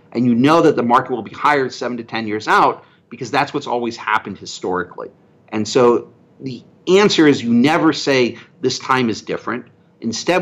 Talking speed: 190 wpm